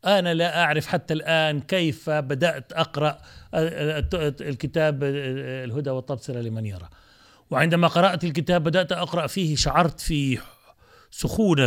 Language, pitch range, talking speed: Arabic, 125-175 Hz, 115 wpm